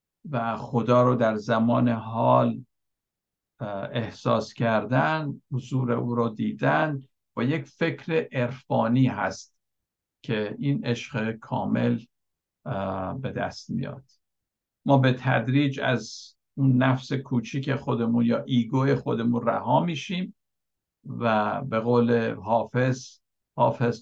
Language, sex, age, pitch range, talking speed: Persian, male, 50-69, 115-135 Hz, 105 wpm